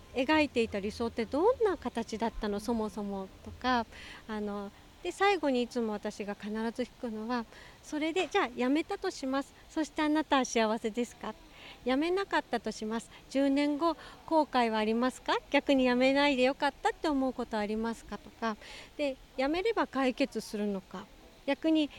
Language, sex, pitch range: Japanese, female, 230-315 Hz